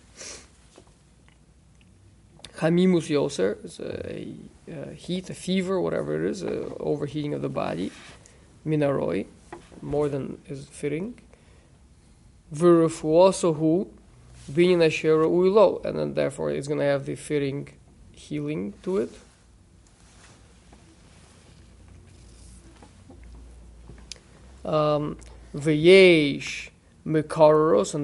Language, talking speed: English, 85 wpm